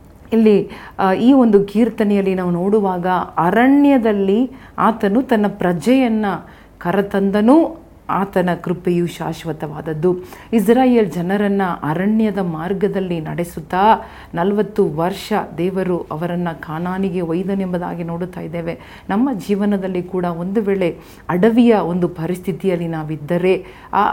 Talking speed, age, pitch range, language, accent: 90 wpm, 40-59, 175-215 Hz, Kannada, native